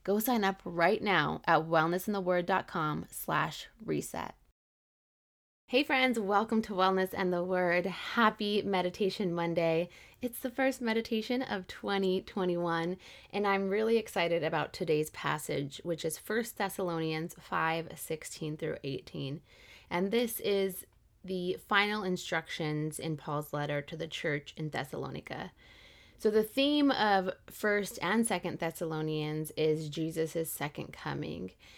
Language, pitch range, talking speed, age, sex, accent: English, 155-200 Hz, 125 wpm, 20-39, female, American